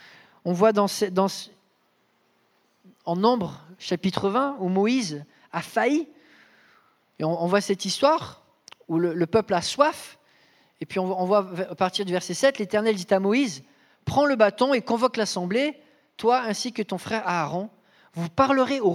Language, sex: English, male